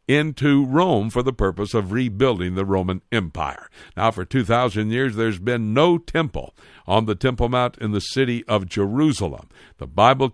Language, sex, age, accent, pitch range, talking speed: English, male, 60-79, American, 105-140 Hz, 170 wpm